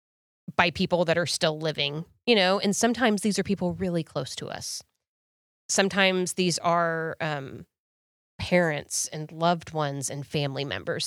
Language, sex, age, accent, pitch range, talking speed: English, female, 30-49, American, 155-200 Hz, 150 wpm